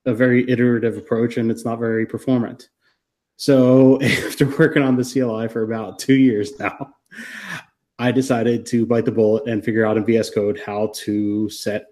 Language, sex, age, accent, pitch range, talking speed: English, male, 30-49, American, 110-125 Hz, 175 wpm